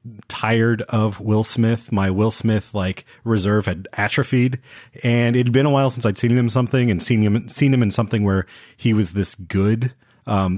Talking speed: 195 wpm